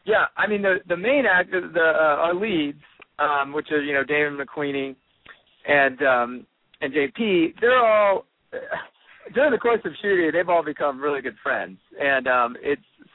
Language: English